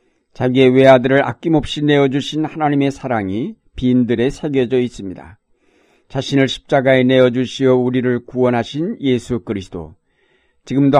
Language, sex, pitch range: Korean, male, 115-140 Hz